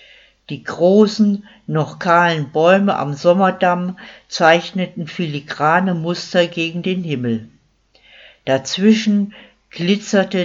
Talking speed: 85 wpm